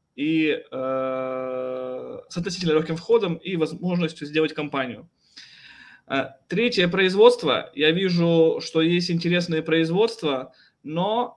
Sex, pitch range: male, 145-175 Hz